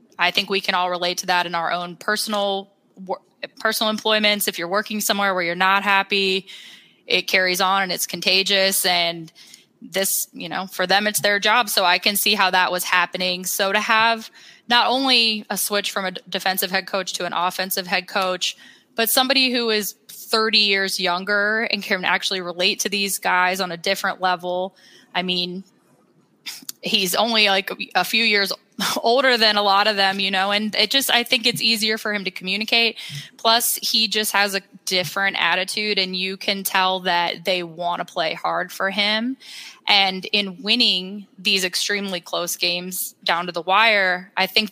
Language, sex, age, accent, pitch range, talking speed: English, female, 20-39, American, 185-210 Hz, 185 wpm